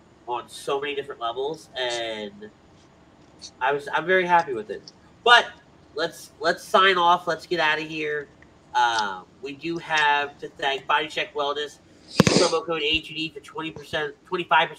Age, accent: 30-49, American